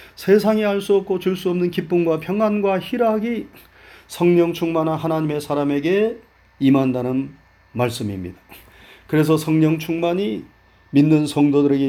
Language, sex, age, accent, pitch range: Korean, male, 40-59, native, 135-200 Hz